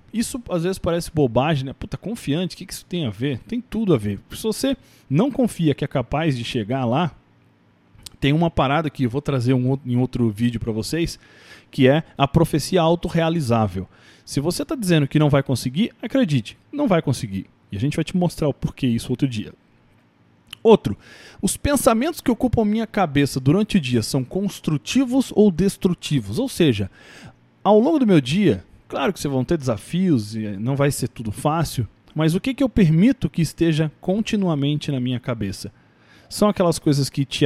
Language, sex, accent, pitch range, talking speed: Portuguese, male, Brazilian, 125-195 Hz, 190 wpm